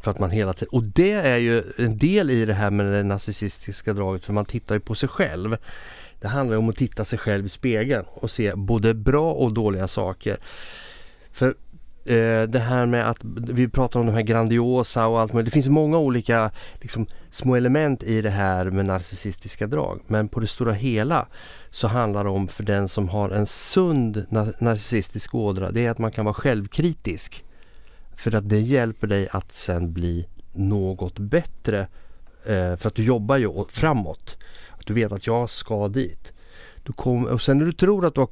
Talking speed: 195 wpm